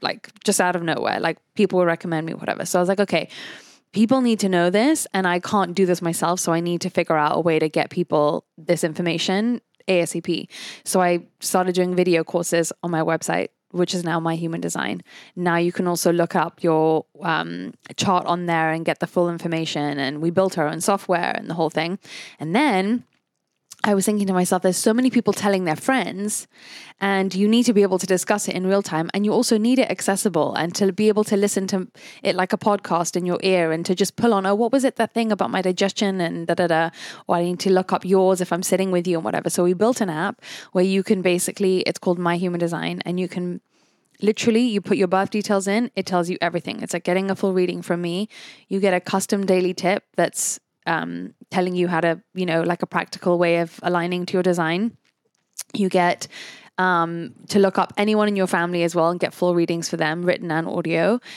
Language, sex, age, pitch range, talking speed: English, female, 10-29, 170-200 Hz, 235 wpm